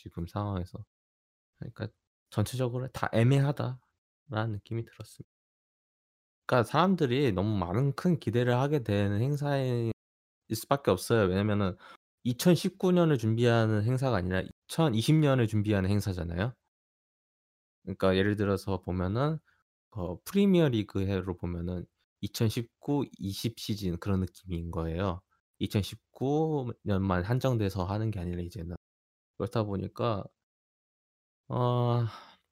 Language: Korean